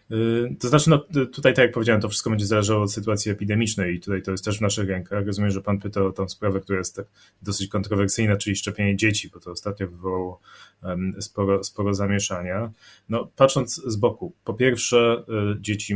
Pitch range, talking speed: 100-115 Hz, 190 wpm